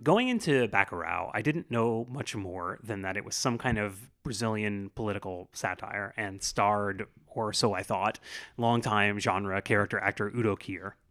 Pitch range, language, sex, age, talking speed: 105-130 Hz, English, male, 30-49, 160 wpm